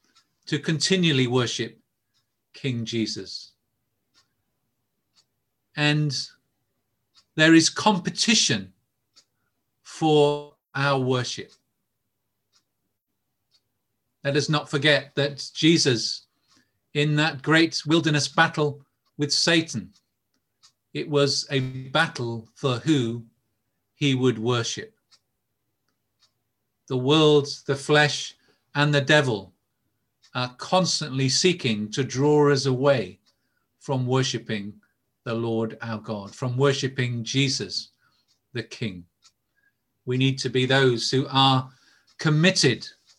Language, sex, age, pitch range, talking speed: English, male, 40-59, 115-145 Hz, 95 wpm